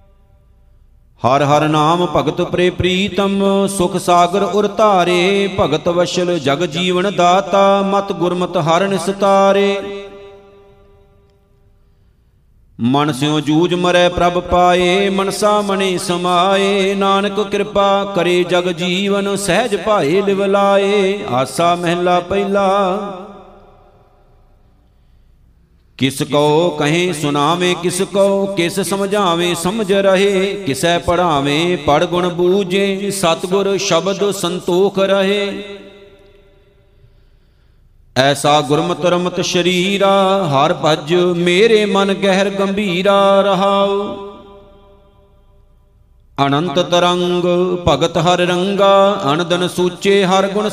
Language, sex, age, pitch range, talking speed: Punjabi, male, 50-69, 175-195 Hz, 90 wpm